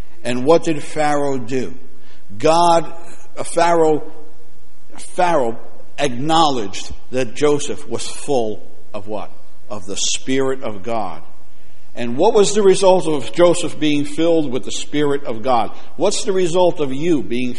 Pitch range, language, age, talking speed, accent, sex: 150-200 Hz, English, 60-79, 135 wpm, American, male